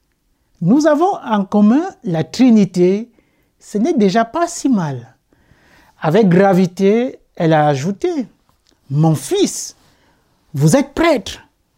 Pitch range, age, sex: 170-235 Hz, 60-79, male